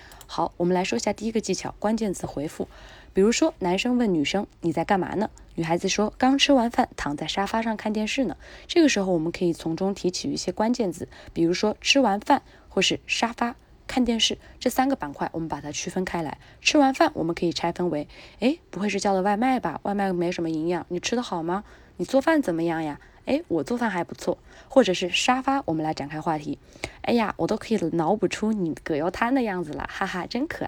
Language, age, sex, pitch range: Chinese, 20-39, female, 170-235 Hz